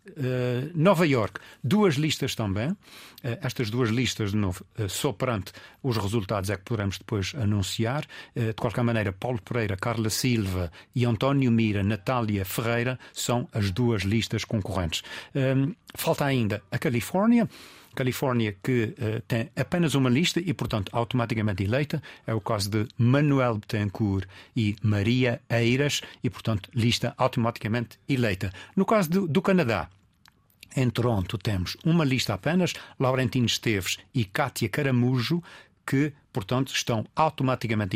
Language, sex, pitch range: Portuguese, male, 105-130 Hz